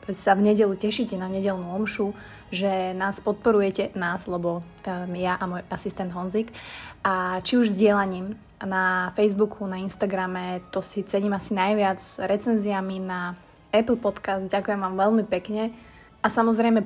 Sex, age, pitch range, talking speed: female, 20-39, 190-215 Hz, 140 wpm